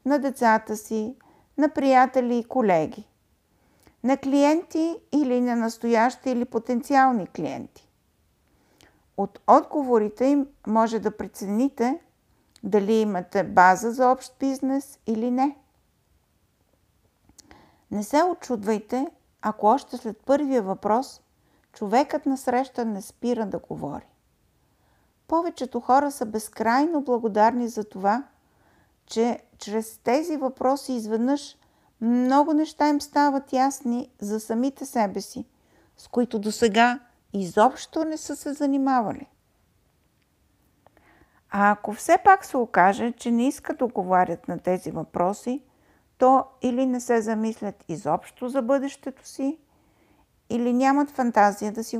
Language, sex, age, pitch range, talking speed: Bulgarian, female, 50-69, 220-270 Hz, 120 wpm